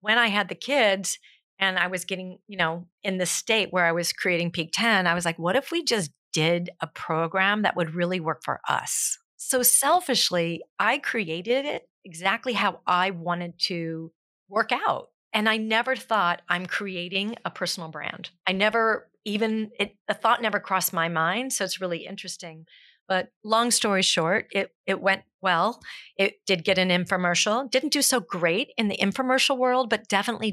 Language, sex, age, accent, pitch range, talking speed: English, female, 40-59, American, 170-210 Hz, 185 wpm